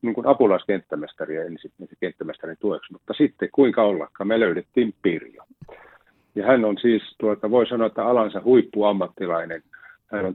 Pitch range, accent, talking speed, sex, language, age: 95-115 Hz, native, 140 wpm, male, Finnish, 50-69